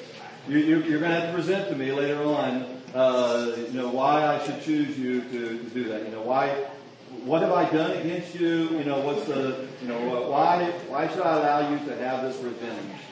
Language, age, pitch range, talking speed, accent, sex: English, 40-59, 115-135 Hz, 230 wpm, American, male